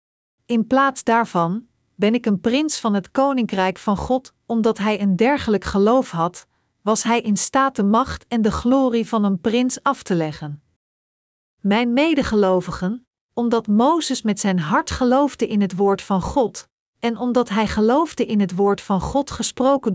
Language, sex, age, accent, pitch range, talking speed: Dutch, female, 40-59, Dutch, 200-255 Hz, 170 wpm